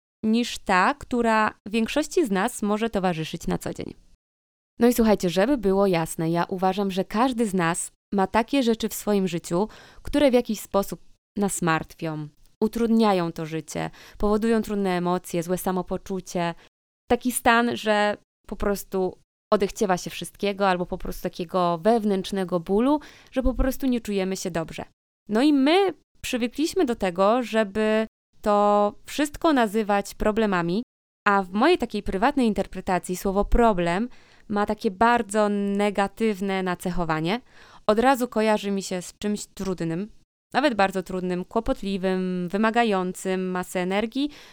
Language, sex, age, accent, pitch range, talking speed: Polish, female, 20-39, native, 185-225 Hz, 140 wpm